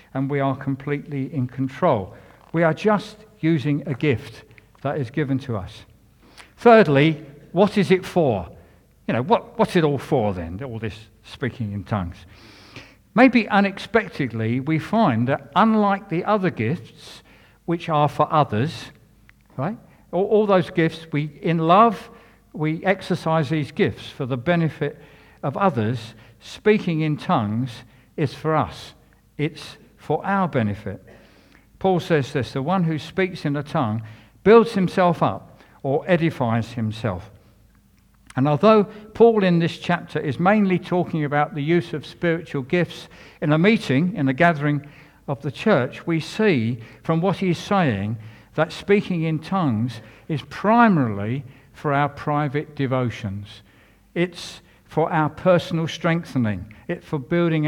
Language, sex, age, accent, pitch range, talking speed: English, male, 60-79, British, 115-175 Hz, 145 wpm